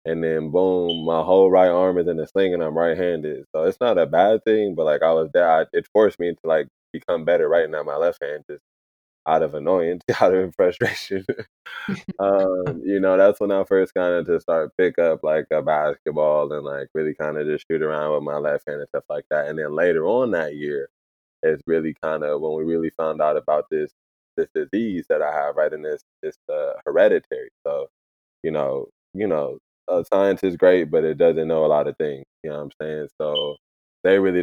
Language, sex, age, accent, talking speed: English, male, 20-39, American, 225 wpm